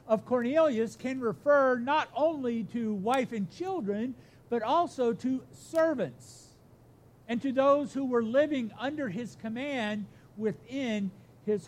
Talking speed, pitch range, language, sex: 130 wpm, 200-280 Hz, English, male